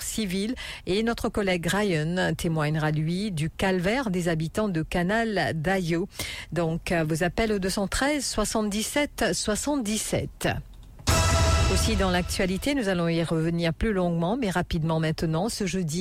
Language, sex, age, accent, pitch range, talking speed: English, female, 50-69, French, 160-190 Hz, 130 wpm